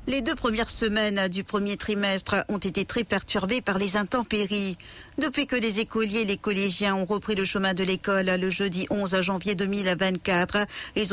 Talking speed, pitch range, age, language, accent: 180 wpm, 185-215 Hz, 50-69, English, French